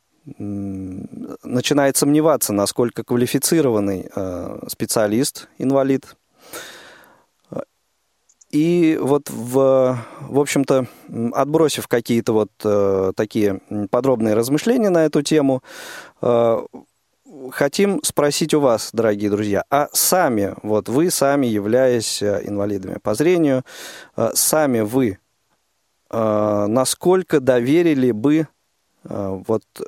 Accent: native